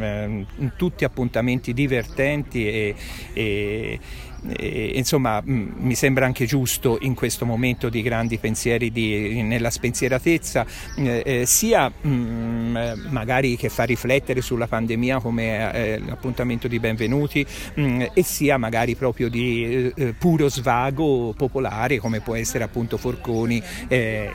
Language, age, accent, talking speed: Italian, 50-69, native, 115 wpm